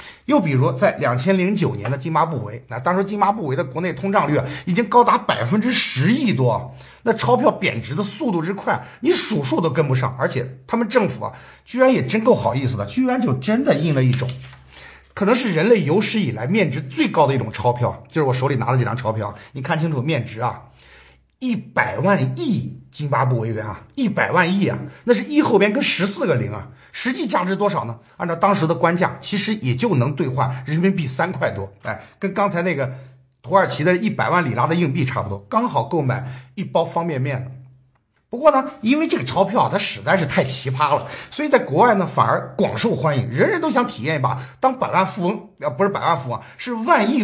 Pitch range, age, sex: 125-200 Hz, 50-69, male